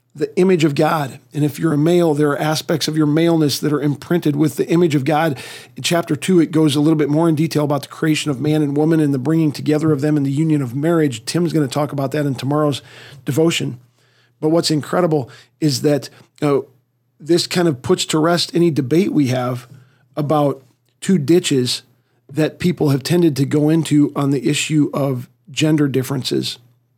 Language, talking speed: English, 205 wpm